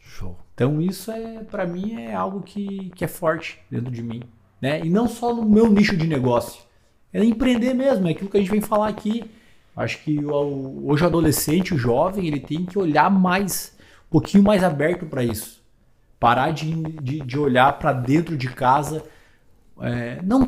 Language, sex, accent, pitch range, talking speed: Portuguese, male, Brazilian, 120-185 Hz, 185 wpm